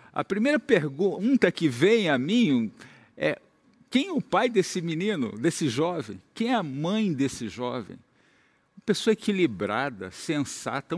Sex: male